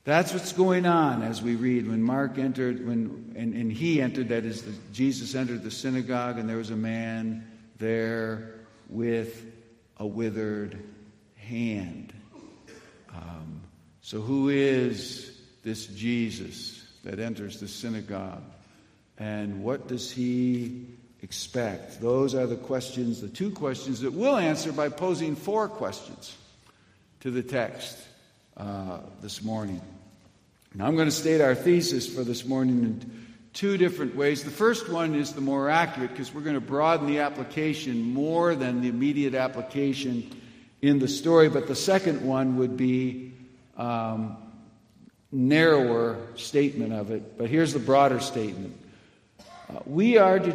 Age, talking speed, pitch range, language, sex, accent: 60-79, 145 wpm, 110-140 Hz, English, male, American